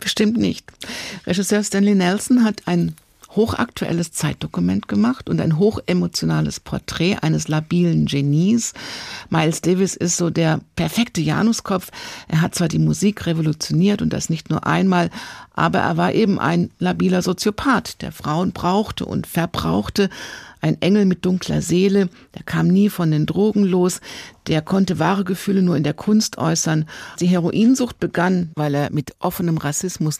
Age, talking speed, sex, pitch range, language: 50-69, 150 wpm, female, 155-185 Hz, German